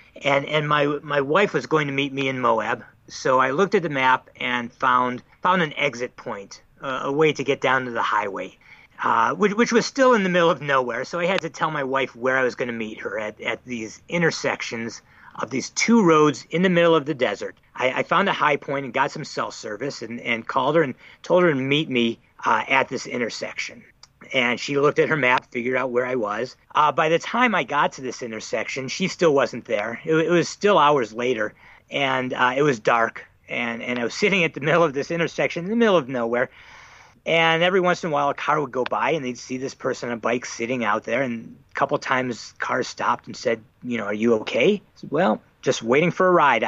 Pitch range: 125-165 Hz